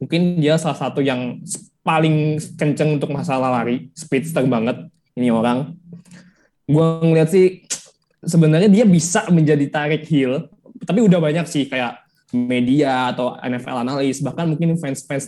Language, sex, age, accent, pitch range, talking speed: Indonesian, male, 20-39, native, 130-160 Hz, 140 wpm